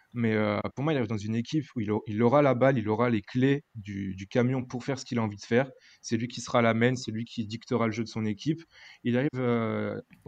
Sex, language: male, French